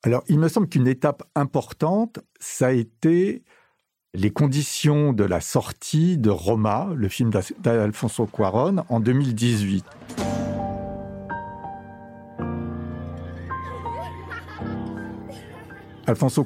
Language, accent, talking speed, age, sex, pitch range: French, French, 90 wpm, 60-79, male, 105-150 Hz